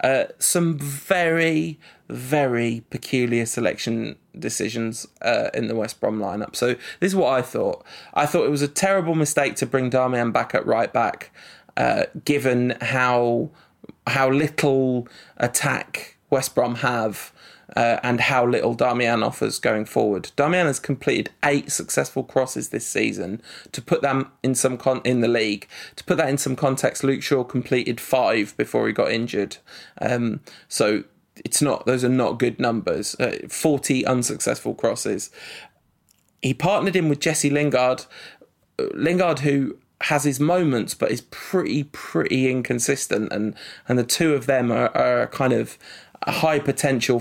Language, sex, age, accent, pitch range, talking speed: English, male, 20-39, British, 120-150 Hz, 160 wpm